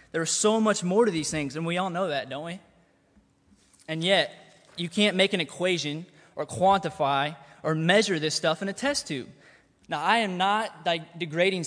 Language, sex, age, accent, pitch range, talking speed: English, male, 20-39, American, 155-195 Hz, 185 wpm